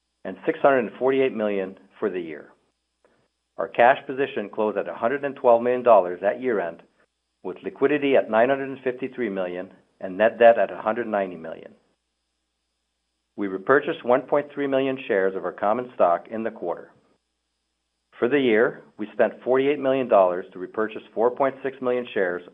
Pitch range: 90-130 Hz